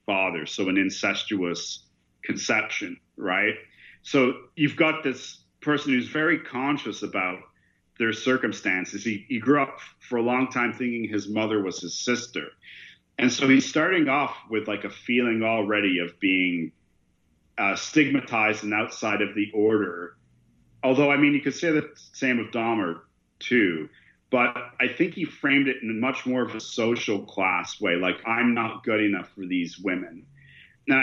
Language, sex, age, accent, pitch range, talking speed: English, male, 40-59, American, 105-135 Hz, 160 wpm